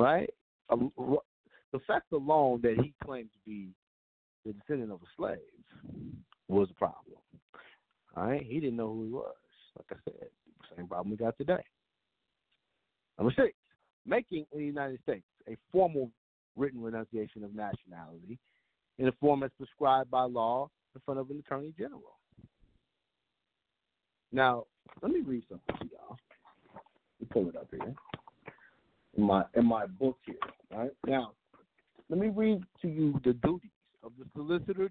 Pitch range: 125-190 Hz